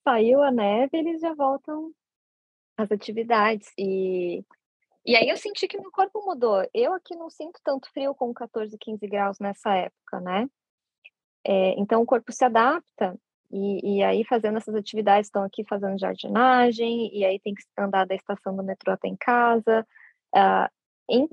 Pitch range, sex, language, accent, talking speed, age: 195-245 Hz, female, Portuguese, Brazilian, 170 wpm, 20-39